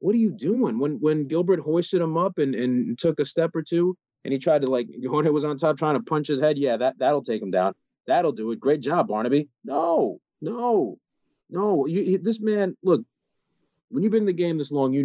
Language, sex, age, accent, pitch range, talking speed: English, male, 30-49, American, 140-200 Hz, 240 wpm